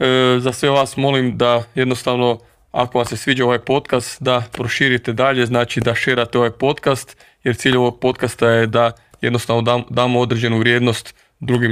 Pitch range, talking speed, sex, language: 115-125 Hz, 160 wpm, male, Croatian